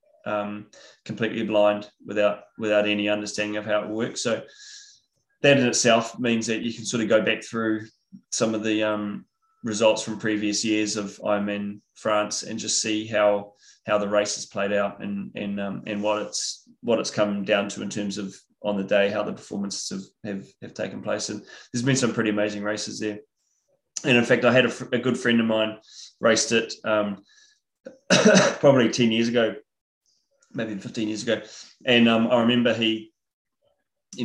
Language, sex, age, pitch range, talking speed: English, male, 20-39, 105-115 Hz, 185 wpm